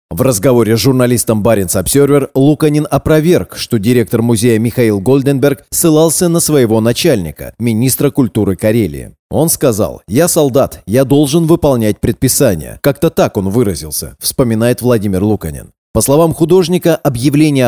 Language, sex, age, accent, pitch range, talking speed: Russian, male, 30-49, native, 110-145 Hz, 130 wpm